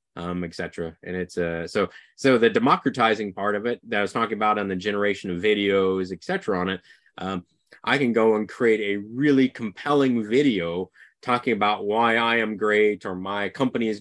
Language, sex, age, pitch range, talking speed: Hungarian, male, 30-49, 95-130 Hz, 195 wpm